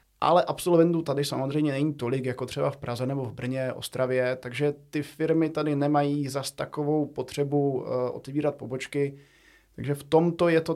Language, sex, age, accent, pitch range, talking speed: Czech, male, 20-39, native, 125-150 Hz, 165 wpm